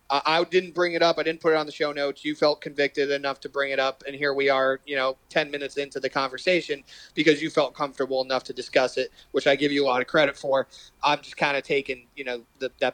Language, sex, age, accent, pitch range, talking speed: English, male, 30-49, American, 140-165 Hz, 265 wpm